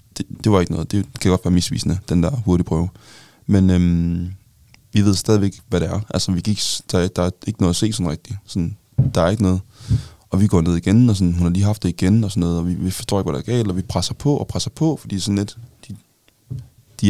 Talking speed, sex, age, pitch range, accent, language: 260 wpm, male, 20-39, 90-110 Hz, native, Danish